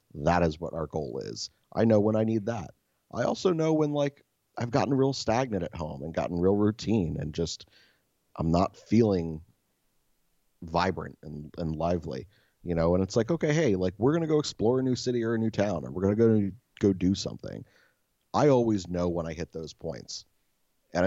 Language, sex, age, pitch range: English, male, 30-49, 80-100 Hz